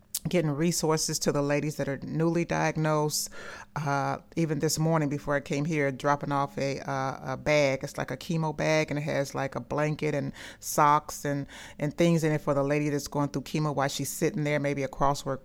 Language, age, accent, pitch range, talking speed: English, 30-49, American, 140-155 Hz, 215 wpm